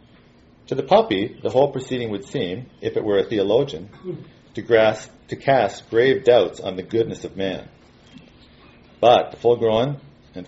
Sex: male